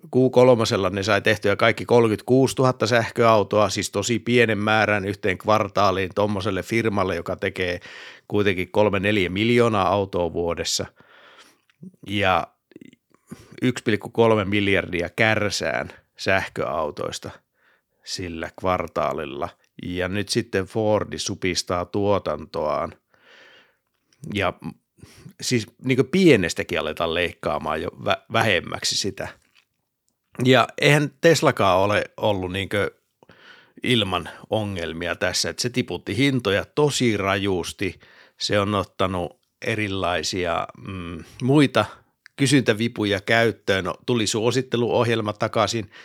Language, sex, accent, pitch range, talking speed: Finnish, male, native, 95-120 Hz, 95 wpm